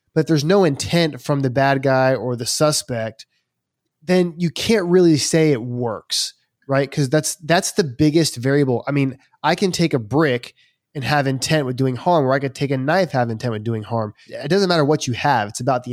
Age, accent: 20-39, American